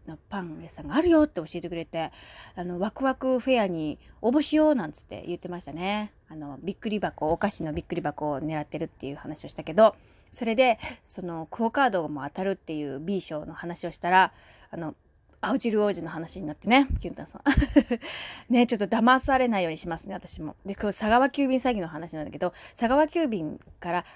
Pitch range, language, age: 175-265 Hz, Japanese, 30-49